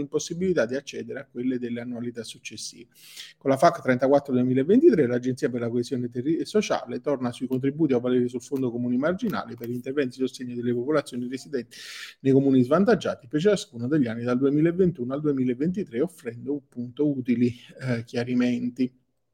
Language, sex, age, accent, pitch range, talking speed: Italian, male, 40-59, native, 125-150 Hz, 170 wpm